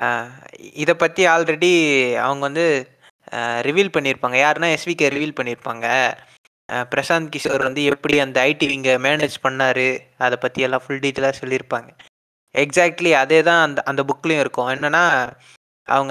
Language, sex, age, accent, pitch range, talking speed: Tamil, male, 20-39, native, 135-170 Hz, 135 wpm